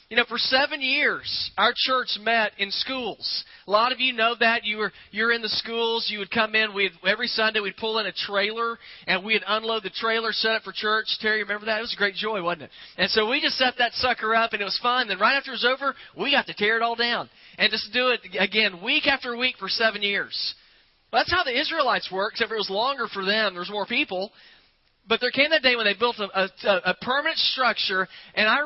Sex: male